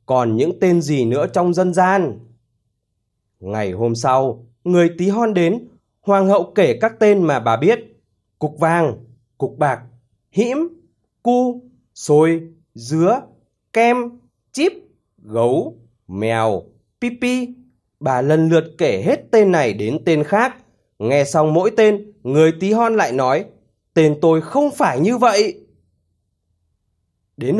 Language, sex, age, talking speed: Vietnamese, male, 20-39, 135 wpm